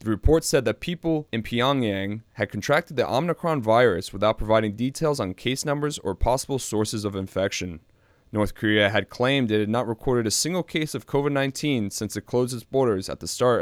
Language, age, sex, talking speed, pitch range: English, 20-39, male, 195 wpm, 100-125 Hz